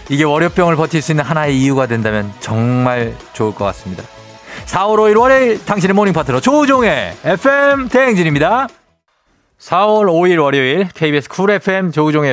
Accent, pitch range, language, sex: native, 100-155 Hz, Korean, male